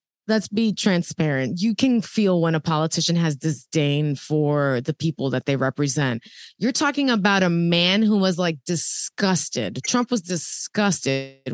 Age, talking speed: 20-39, 150 wpm